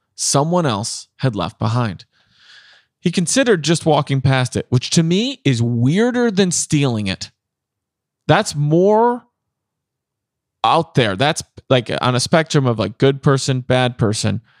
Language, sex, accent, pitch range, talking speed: English, male, American, 115-155 Hz, 145 wpm